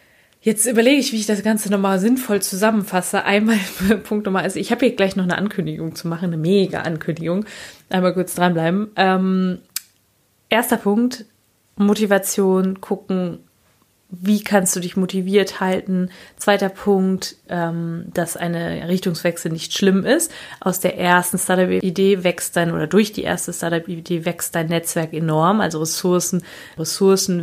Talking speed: 145 wpm